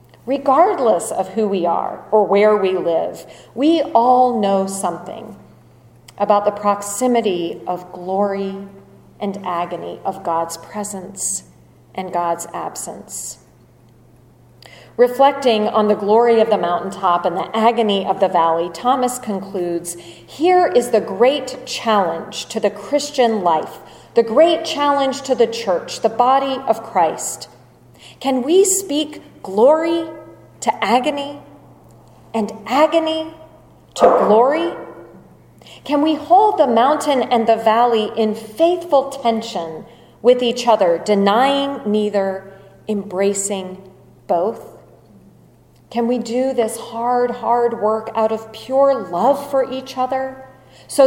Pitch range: 195-265 Hz